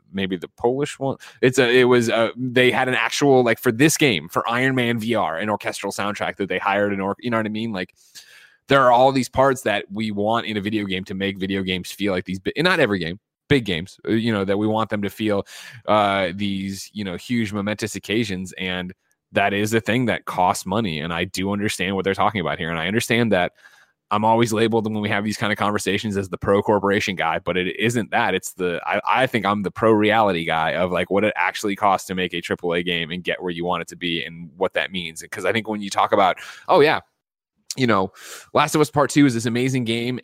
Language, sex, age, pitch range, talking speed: English, male, 20-39, 95-115 Hz, 255 wpm